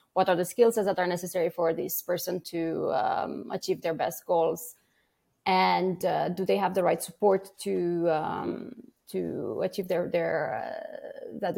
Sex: female